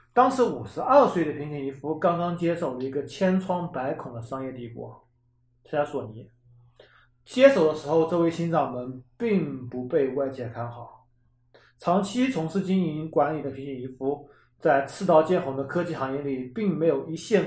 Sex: male